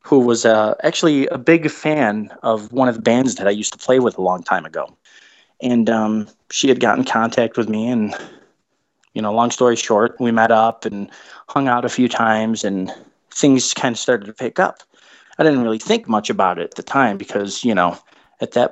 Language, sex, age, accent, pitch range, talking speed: English, male, 20-39, American, 105-135 Hz, 220 wpm